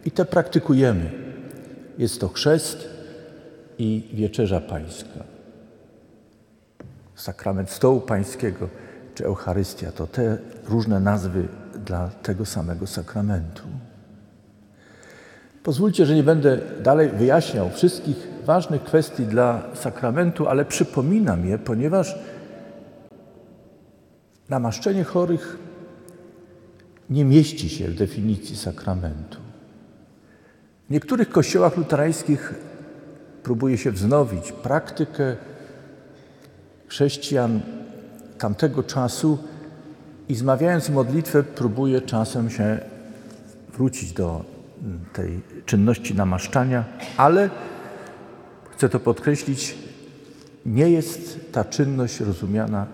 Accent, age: native, 50-69